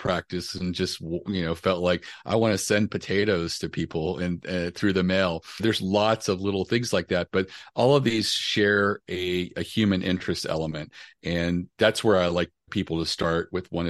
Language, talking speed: English, 200 wpm